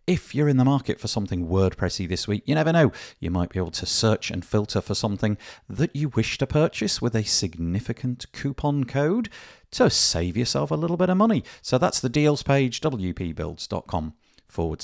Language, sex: English, male